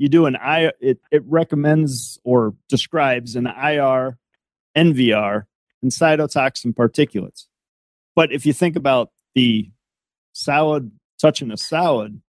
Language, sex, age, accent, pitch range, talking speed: English, male, 40-59, American, 110-140 Hz, 120 wpm